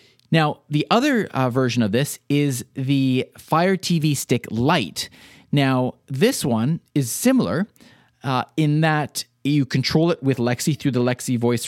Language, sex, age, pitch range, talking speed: English, male, 30-49, 120-155 Hz, 155 wpm